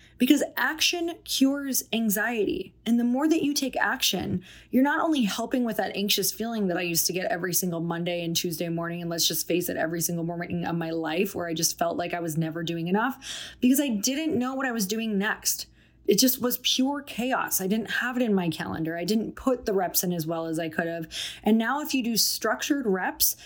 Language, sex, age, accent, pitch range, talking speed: English, female, 20-39, American, 185-255 Hz, 235 wpm